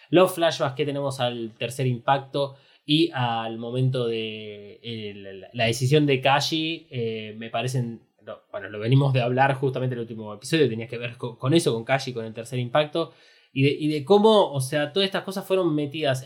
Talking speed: 195 wpm